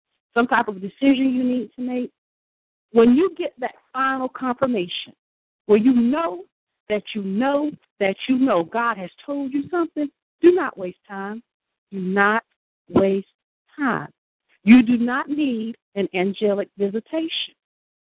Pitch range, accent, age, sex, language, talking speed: 210-290 Hz, American, 50-69, female, English, 145 wpm